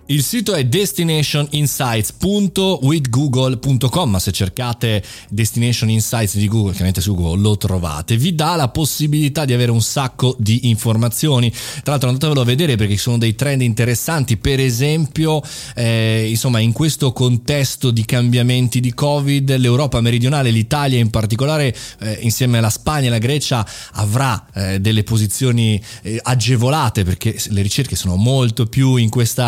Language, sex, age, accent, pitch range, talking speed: Italian, male, 20-39, native, 110-140 Hz, 150 wpm